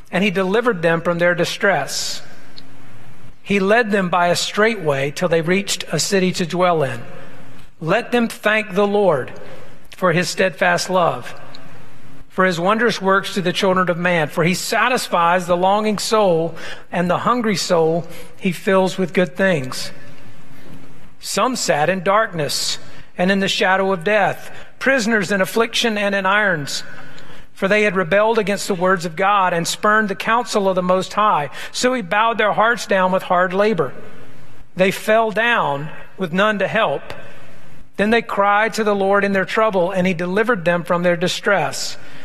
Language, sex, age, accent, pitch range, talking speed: English, male, 50-69, American, 170-205 Hz, 170 wpm